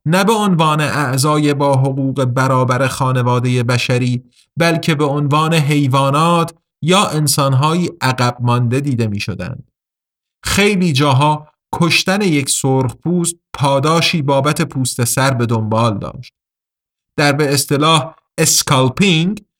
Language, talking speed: Persian, 110 wpm